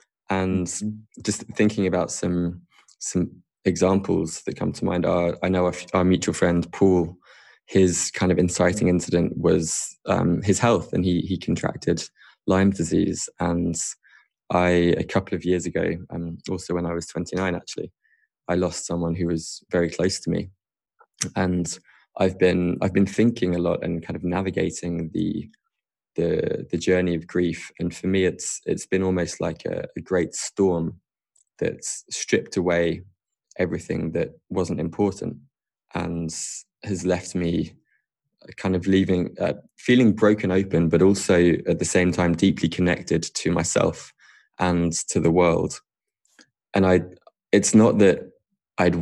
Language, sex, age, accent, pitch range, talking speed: English, male, 20-39, British, 85-95 Hz, 155 wpm